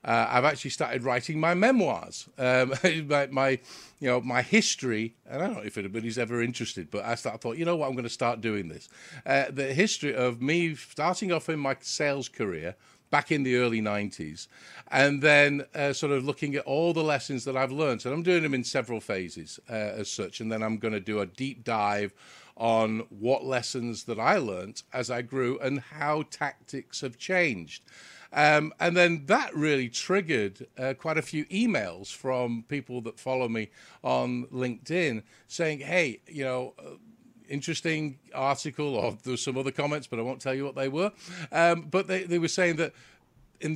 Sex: male